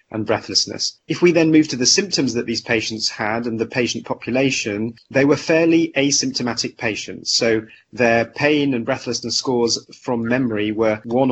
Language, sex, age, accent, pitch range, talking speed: English, male, 30-49, British, 115-130 Hz, 170 wpm